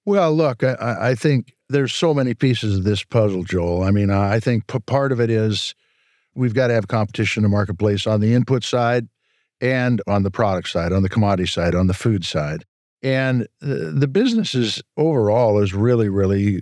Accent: American